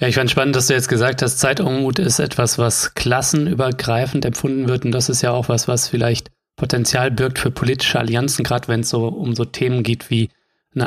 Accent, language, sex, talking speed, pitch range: German, German, male, 220 wpm, 120-145 Hz